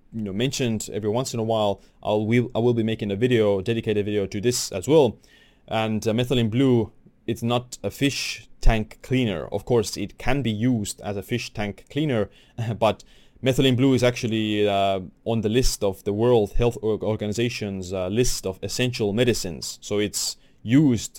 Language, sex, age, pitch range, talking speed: English, male, 20-39, 100-125 Hz, 185 wpm